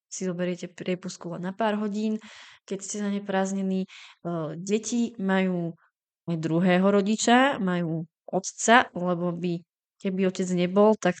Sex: female